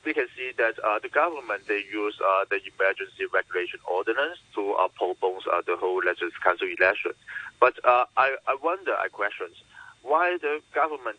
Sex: male